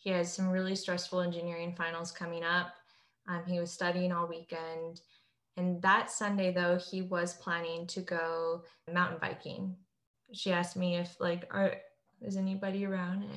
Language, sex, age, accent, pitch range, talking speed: English, female, 20-39, American, 175-195 Hz, 160 wpm